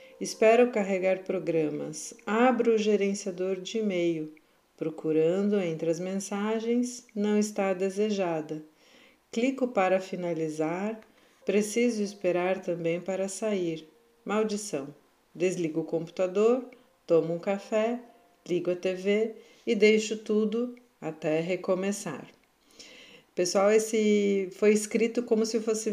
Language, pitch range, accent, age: Portuguese, 170-220 Hz, Brazilian, 50-69